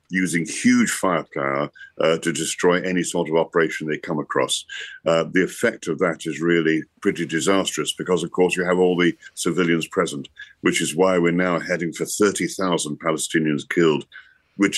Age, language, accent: 60-79, English, British